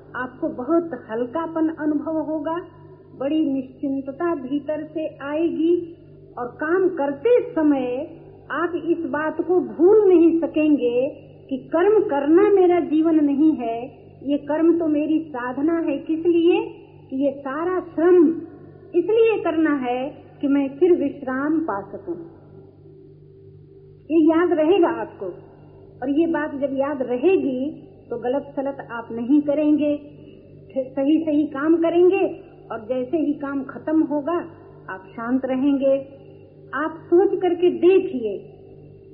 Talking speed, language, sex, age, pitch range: 125 wpm, Hindi, female, 50-69, 280-335 Hz